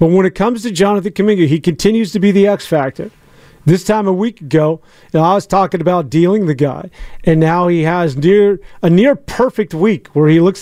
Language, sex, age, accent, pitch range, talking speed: English, male, 40-59, American, 160-195 Hz, 210 wpm